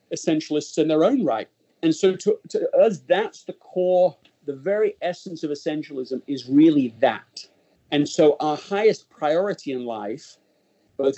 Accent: British